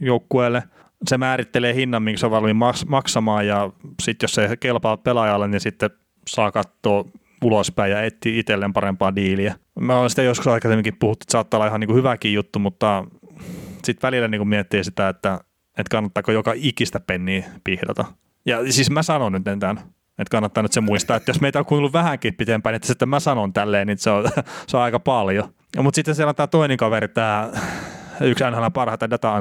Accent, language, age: native, Finnish, 30-49